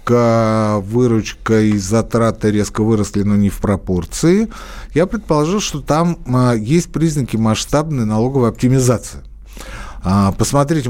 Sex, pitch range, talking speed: male, 110-170 Hz, 105 wpm